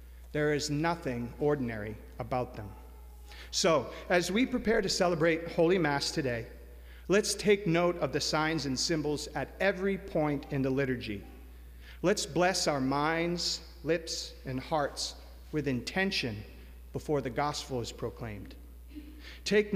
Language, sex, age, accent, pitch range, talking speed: English, male, 40-59, American, 105-165 Hz, 135 wpm